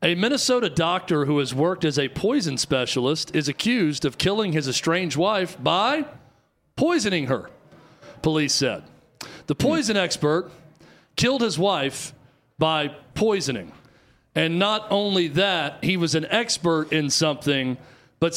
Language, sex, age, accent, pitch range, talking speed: English, male, 40-59, American, 140-185 Hz, 135 wpm